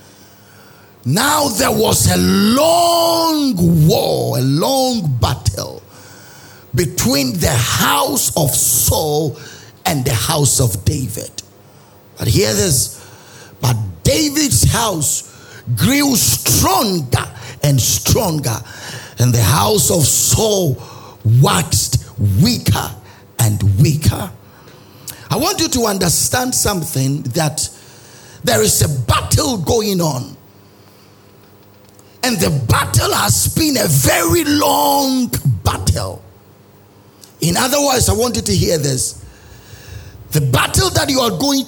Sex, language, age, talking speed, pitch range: male, English, 50-69, 110 wpm, 100-165 Hz